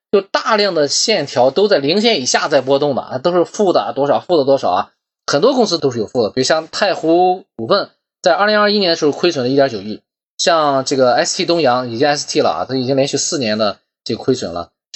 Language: Chinese